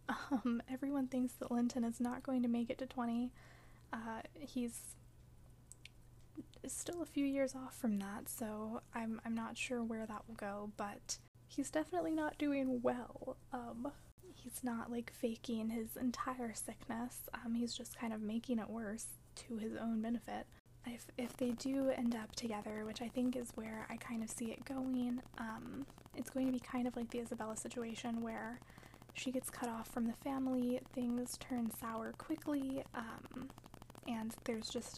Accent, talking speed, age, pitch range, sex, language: American, 175 wpm, 20-39, 225-255 Hz, female, English